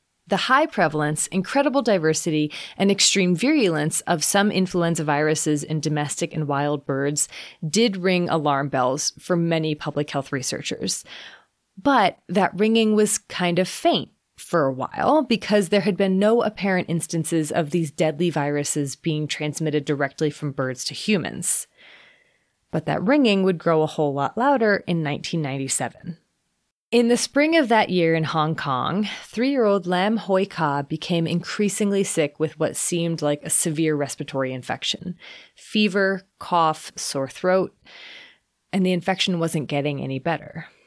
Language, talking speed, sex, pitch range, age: English, 145 wpm, female, 150-200 Hz, 30-49